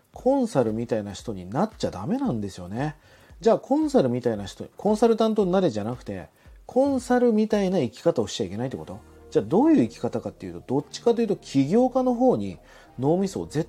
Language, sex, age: Japanese, male, 40-59